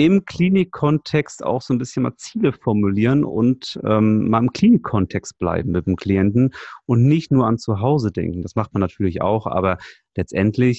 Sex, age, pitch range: male, 30-49, 95-120 Hz